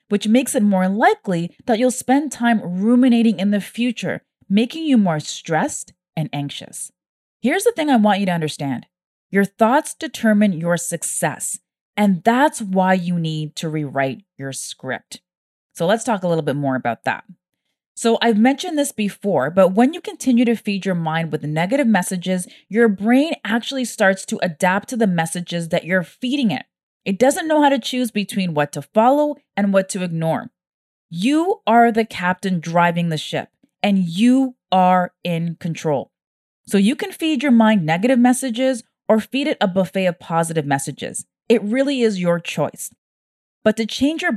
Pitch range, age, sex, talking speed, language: 175-245 Hz, 20-39, female, 175 wpm, English